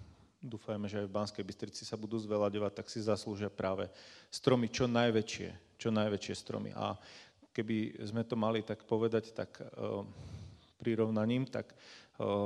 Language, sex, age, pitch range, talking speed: Slovak, male, 40-59, 105-120 Hz, 155 wpm